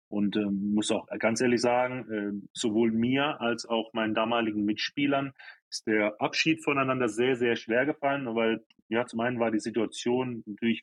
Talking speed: 170 wpm